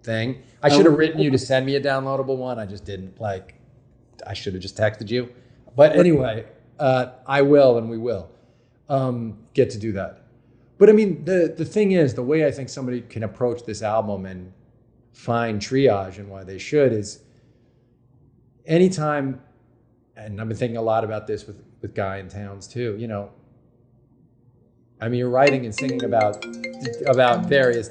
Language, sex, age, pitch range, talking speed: English, male, 40-59, 110-130 Hz, 185 wpm